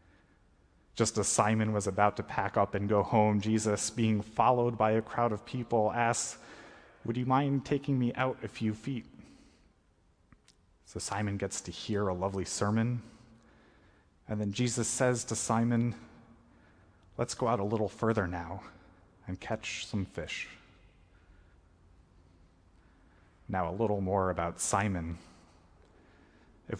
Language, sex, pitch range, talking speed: English, male, 90-115 Hz, 135 wpm